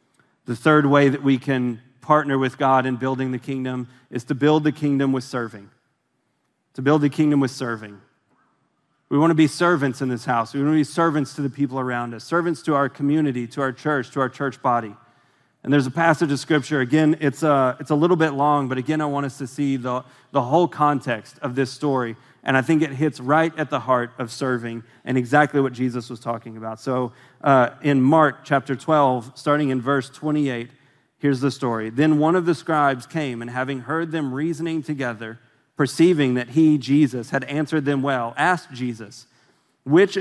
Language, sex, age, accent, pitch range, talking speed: English, male, 30-49, American, 130-165 Hz, 200 wpm